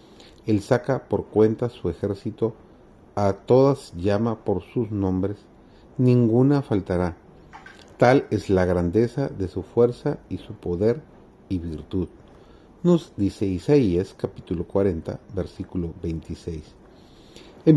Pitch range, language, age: 90-125 Hz, Spanish, 40-59